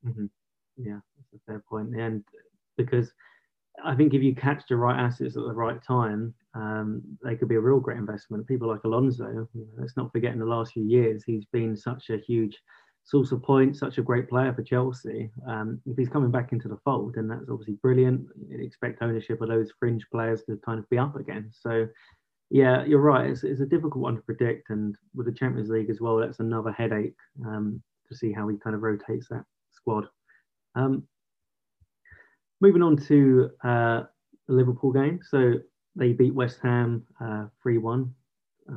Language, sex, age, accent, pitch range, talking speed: English, male, 20-39, British, 115-130 Hz, 195 wpm